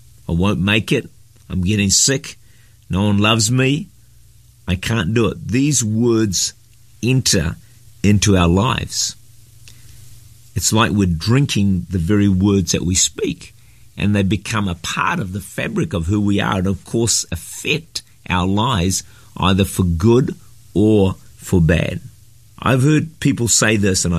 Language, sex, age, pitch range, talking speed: English, male, 50-69, 95-115 Hz, 150 wpm